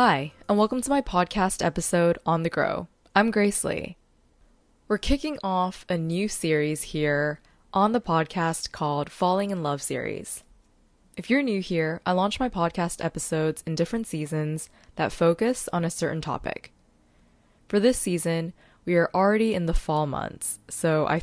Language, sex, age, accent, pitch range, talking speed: English, female, 20-39, American, 155-195 Hz, 165 wpm